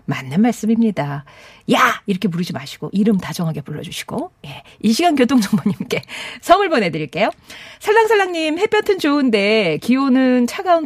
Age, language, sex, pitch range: 40-59, Korean, female, 170-265 Hz